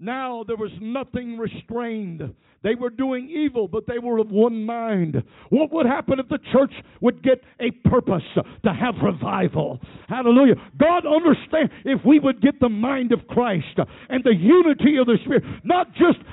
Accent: American